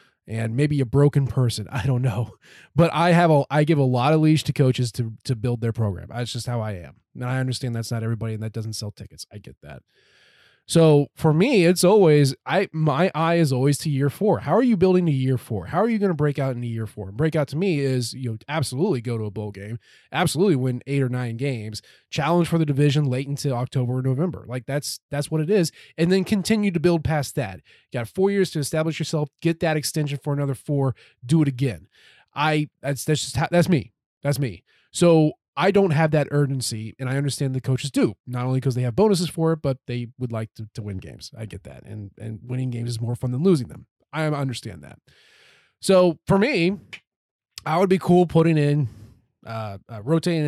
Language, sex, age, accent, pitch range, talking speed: English, male, 20-39, American, 120-165 Hz, 235 wpm